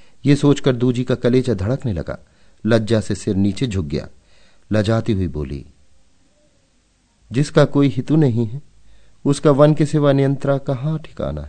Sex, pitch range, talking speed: male, 95-135 Hz, 140 wpm